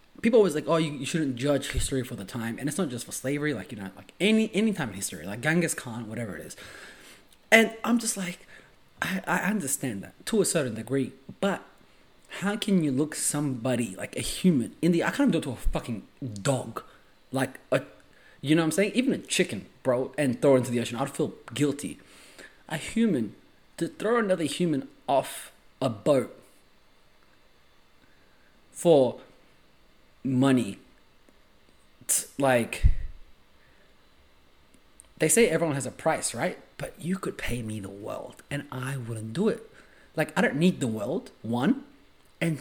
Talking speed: 175 wpm